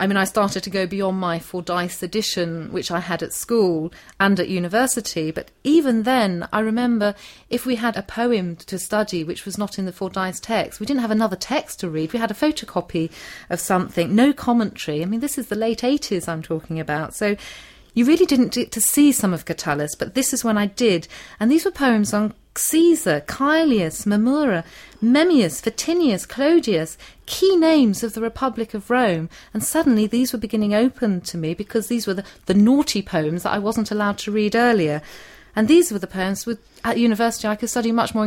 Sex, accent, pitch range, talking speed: female, British, 180-240 Hz, 205 wpm